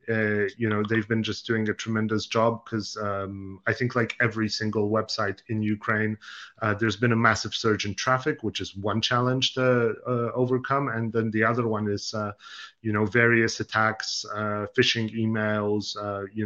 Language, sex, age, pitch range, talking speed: English, male, 30-49, 110-125 Hz, 185 wpm